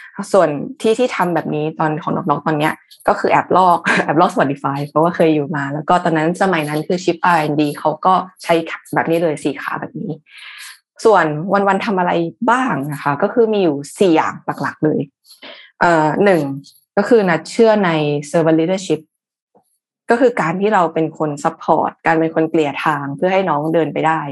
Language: Thai